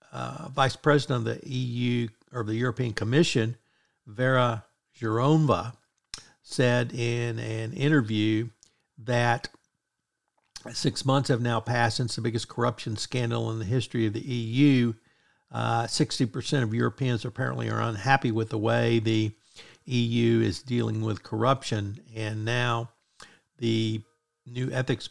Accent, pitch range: American, 110-125 Hz